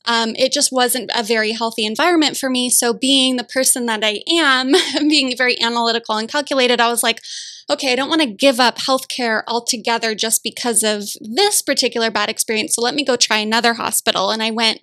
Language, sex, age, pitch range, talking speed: English, female, 10-29, 225-275 Hz, 205 wpm